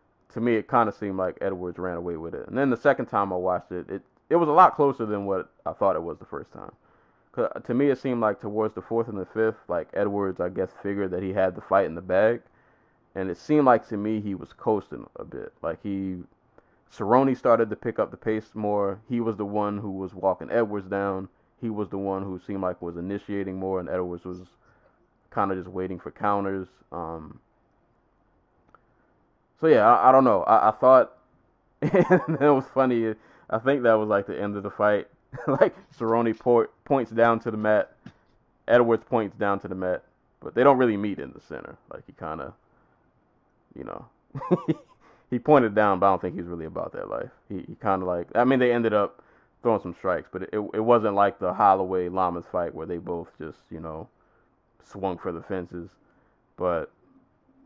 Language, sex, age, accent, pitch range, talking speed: English, male, 20-39, American, 95-115 Hz, 215 wpm